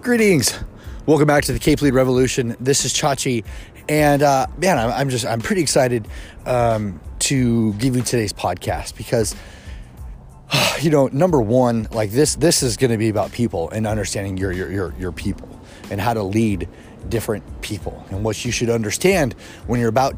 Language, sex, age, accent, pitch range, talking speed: English, male, 30-49, American, 100-125 Hz, 185 wpm